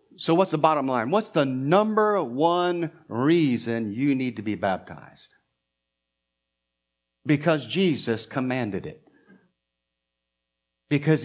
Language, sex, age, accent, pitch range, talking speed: English, male, 50-69, American, 100-135 Hz, 105 wpm